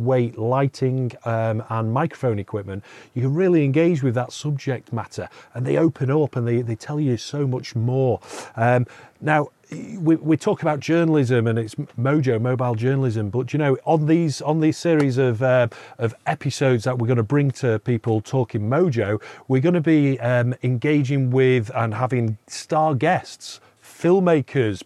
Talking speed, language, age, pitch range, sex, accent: 170 wpm, English, 40-59, 120-155 Hz, male, British